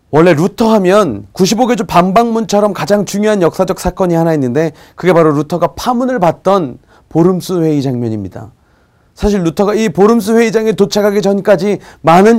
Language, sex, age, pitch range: Korean, male, 40-59, 150-210 Hz